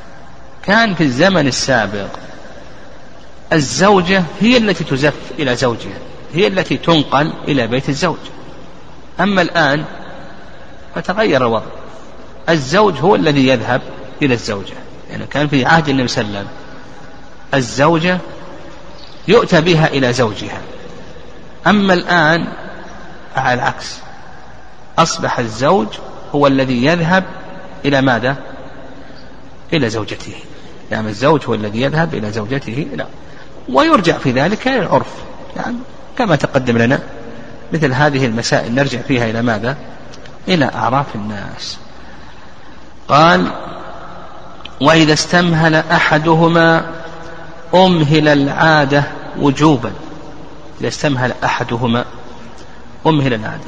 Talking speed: 100 wpm